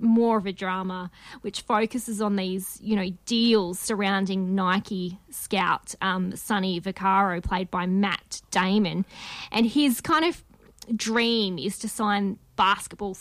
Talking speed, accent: 135 wpm, Australian